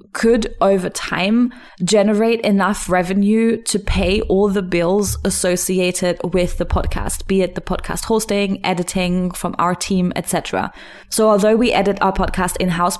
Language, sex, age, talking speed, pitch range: English, female, 20-39, 150 wpm, 180-205 Hz